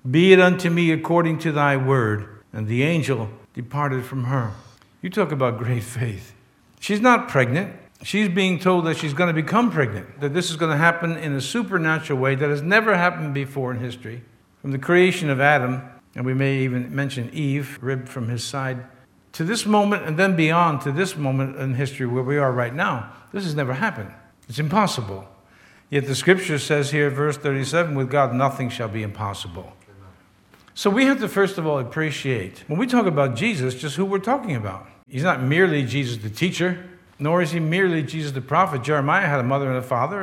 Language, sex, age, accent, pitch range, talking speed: English, male, 60-79, American, 120-165 Hz, 205 wpm